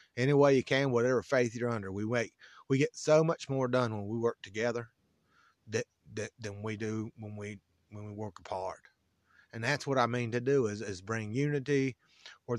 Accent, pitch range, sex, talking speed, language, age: American, 105-125 Hz, male, 205 wpm, English, 30-49